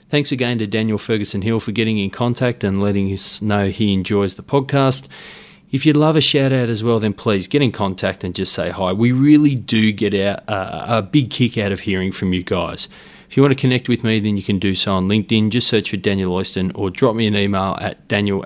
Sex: male